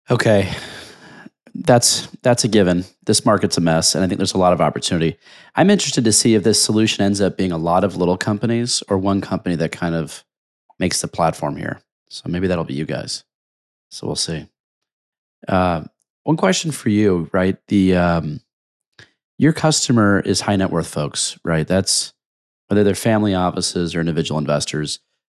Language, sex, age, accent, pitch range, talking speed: English, male, 30-49, American, 85-105 Hz, 180 wpm